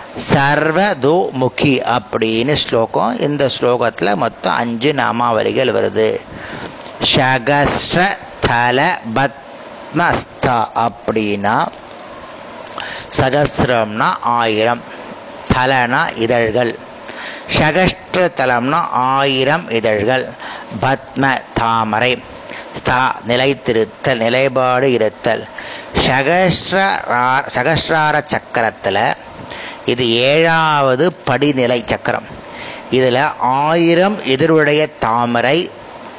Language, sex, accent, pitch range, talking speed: Tamil, male, native, 120-155 Hz, 60 wpm